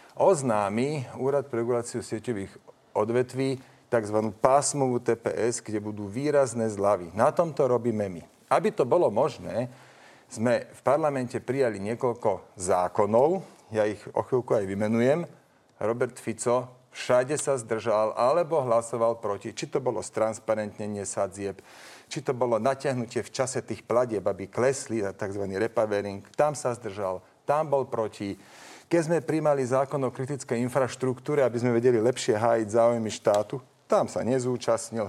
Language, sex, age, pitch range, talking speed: Slovak, male, 40-59, 115-145 Hz, 140 wpm